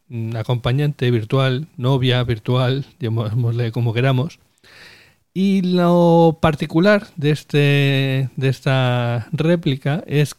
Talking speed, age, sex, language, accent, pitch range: 90 wpm, 40-59, male, Spanish, Spanish, 115-145 Hz